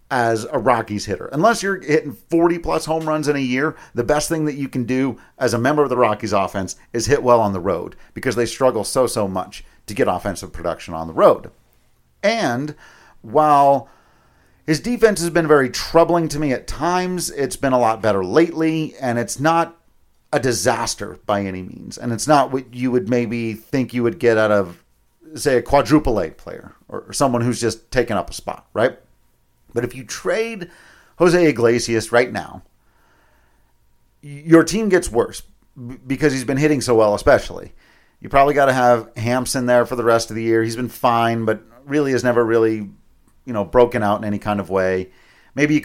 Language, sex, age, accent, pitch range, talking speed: English, male, 40-59, American, 115-150 Hz, 200 wpm